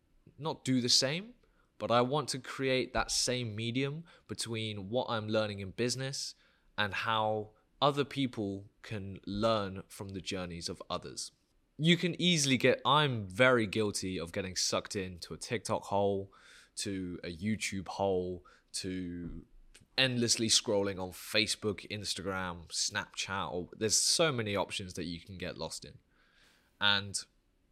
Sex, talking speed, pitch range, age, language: male, 140 wpm, 95-125 Hz, 20-39, English